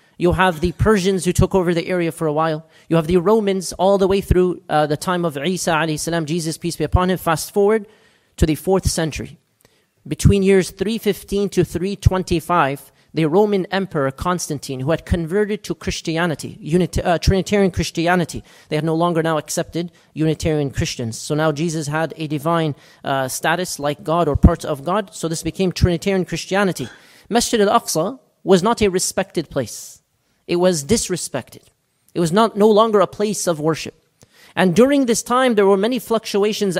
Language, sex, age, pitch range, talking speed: English, male, 40-59, 160-200 Hz, 175 wpm